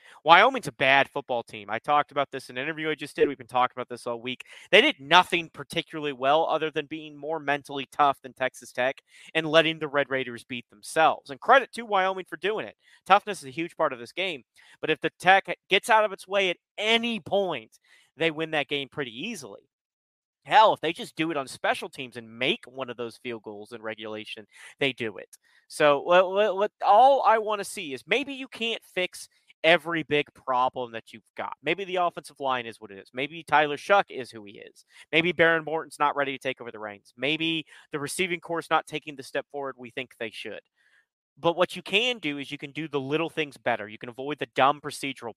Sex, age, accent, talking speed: male, 30-49, American, 225 wpm